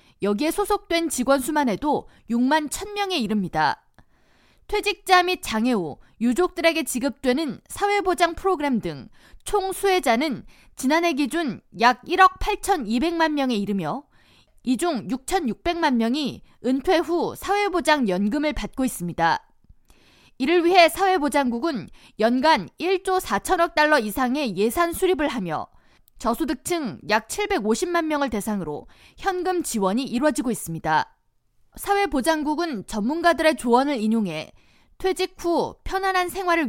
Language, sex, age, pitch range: Korean, female, 20-39, 240-345 Hz